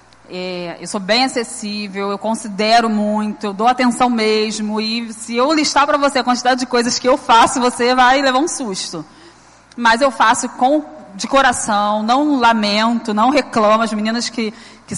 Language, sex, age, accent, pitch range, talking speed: Portuguese, female, 20-39, Brazilian, 215-260 Hz, 170 wpm